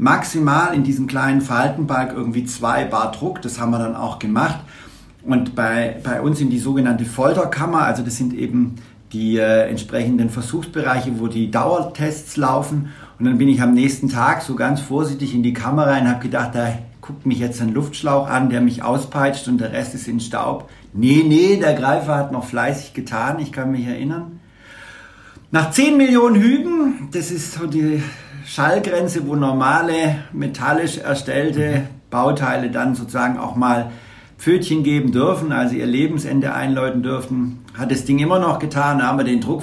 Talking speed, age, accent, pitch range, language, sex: 175 wpm, 60-79, German, 125-150 Hz, German, male